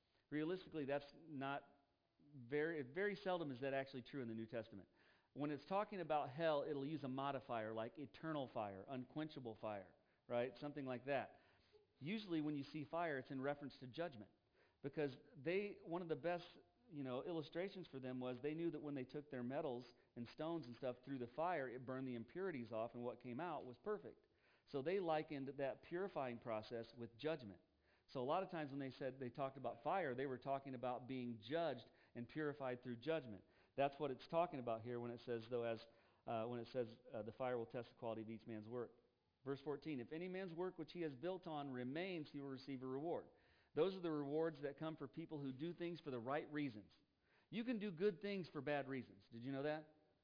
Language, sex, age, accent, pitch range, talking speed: English, male, 40-59, American, 125-160 Hz, 215 wpm